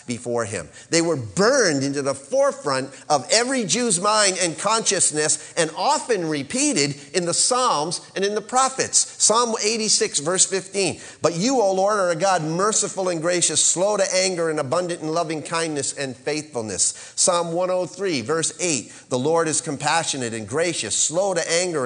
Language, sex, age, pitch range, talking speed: English, male, 40-59, 130-185 Hz, 165 wpm